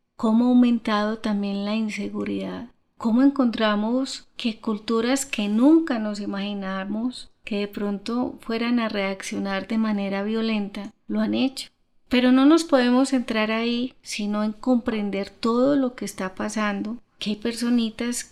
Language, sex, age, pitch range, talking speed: Spanish, female, 30-49, 200-240 Hz, 140 wpm